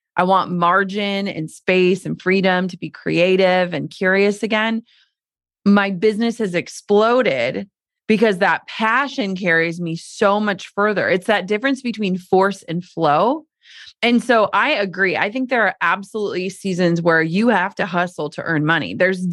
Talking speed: 160 wpm